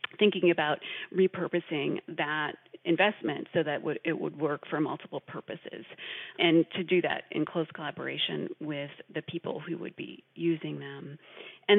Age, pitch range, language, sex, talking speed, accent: 30-49, 165-195 Hz, English, female, 150 wpm, American